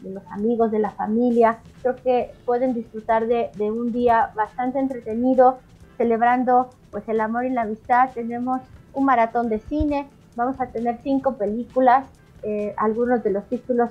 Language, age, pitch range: Spanish, 30-49, 225-255 Hz